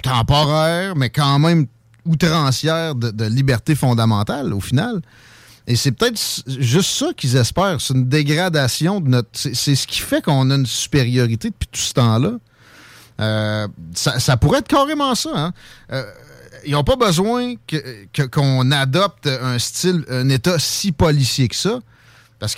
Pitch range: 120-155 Hz